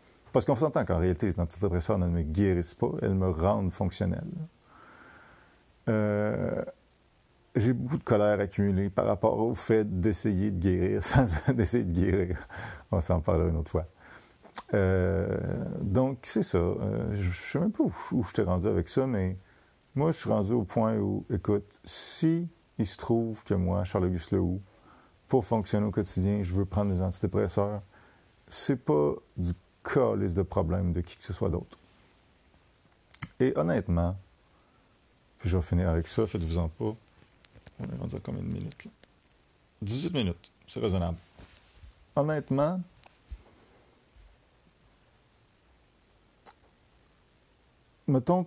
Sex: male